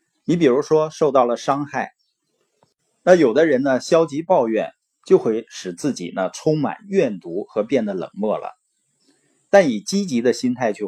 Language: Chinese